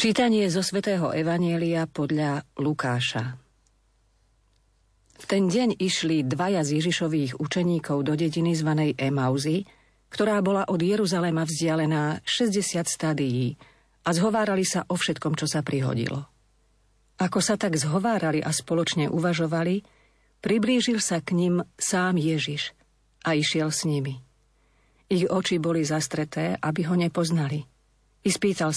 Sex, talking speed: female, 120 wpm